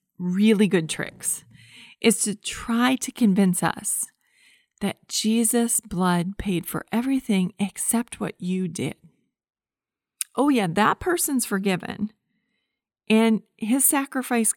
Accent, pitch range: American, 185-235 Hz